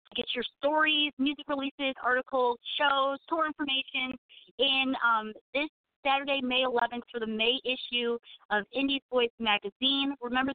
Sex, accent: female, American